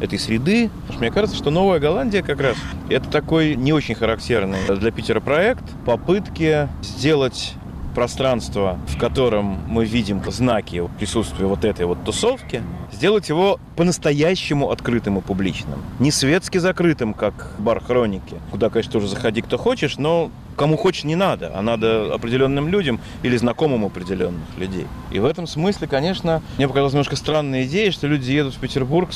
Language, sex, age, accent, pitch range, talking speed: Russian, male, 30-49, native, 95-150 Hz, 160 wpm